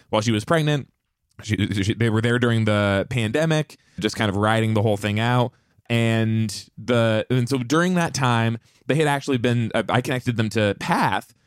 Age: 20-39